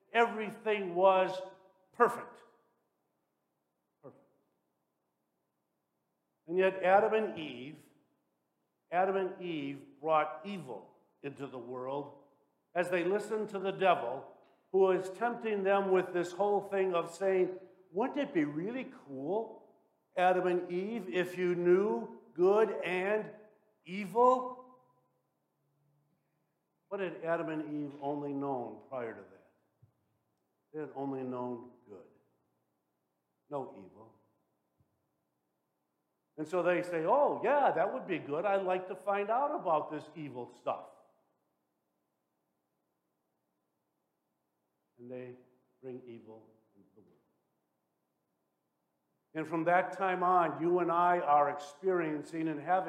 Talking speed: 115 wpm